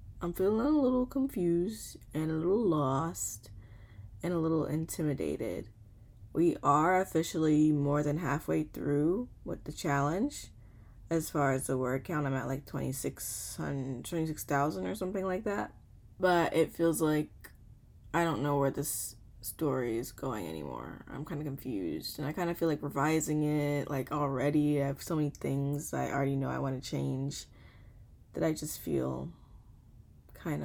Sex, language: female, English